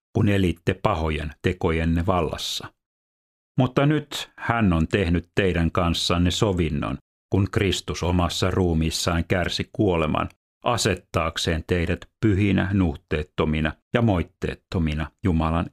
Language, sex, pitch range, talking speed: Finnish, male, 80-95 Hz, 100 wpm